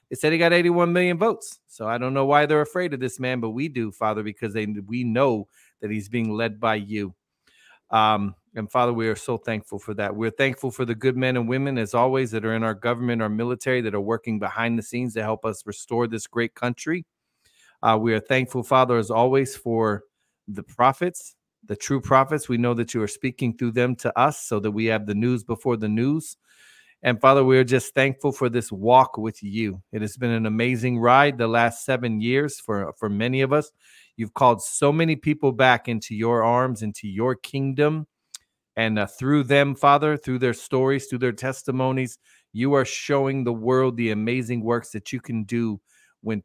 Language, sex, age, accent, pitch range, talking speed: English, male, 40-59, American, 110-135 Hz, 210 wpm